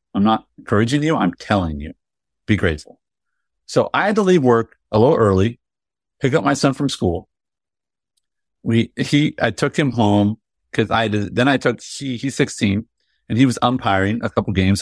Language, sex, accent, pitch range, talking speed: English, male, American, 95-115 Hz, 190 wpm